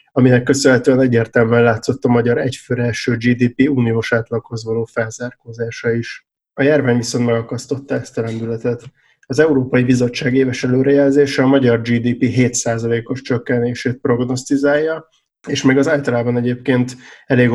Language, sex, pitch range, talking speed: Hungarian, male, 120-130 Hz, 125 wpm